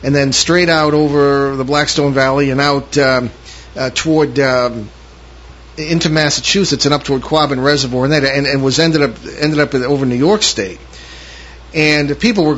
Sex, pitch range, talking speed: male, 130-165 Hz, 175 wpm